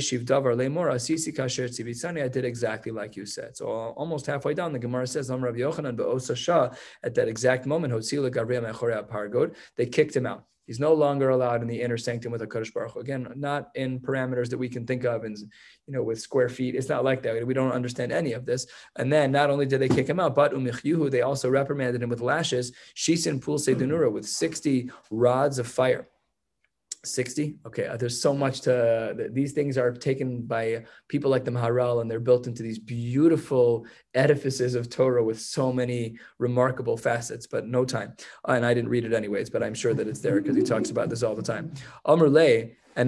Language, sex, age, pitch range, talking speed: English, male, 20-39, 120-145 Hz, 185 wpm